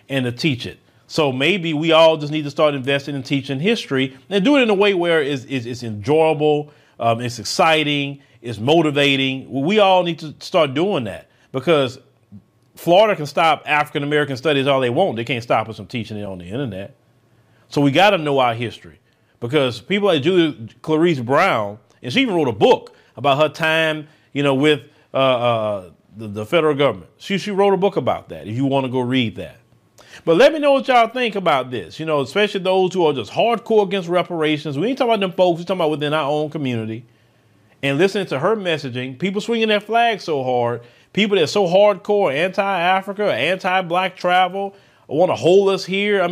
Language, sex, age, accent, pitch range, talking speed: English, male, 40-59, American, 130-195 Hz, 205 wpm